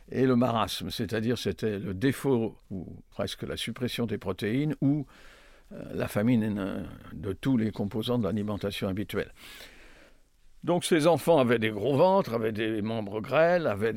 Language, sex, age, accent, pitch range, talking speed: French, male, 60-79, French, 105-135 Hz, 150 wpm